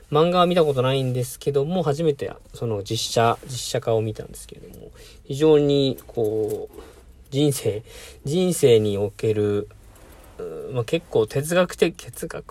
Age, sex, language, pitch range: 40-59, male, Japanese, 105-150 Hz